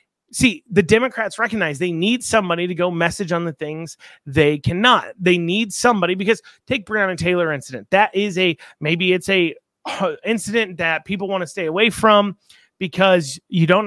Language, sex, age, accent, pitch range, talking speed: English, male, 30-49, American, 170-220 Hz, 180 wpm